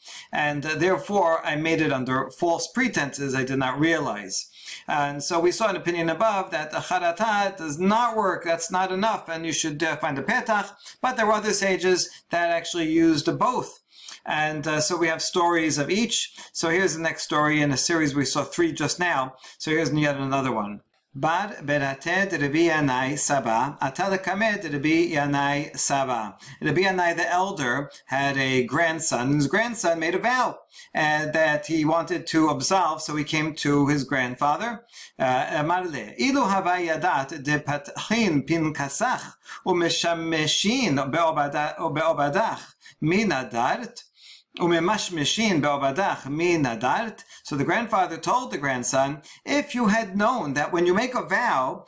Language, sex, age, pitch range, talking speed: English, male, 40-59, 145-185 Hz, 155 wpm